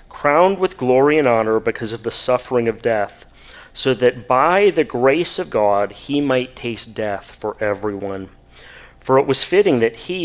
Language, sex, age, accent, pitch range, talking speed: English, male, 40-59, American, 105-130 Hz, 175 wpm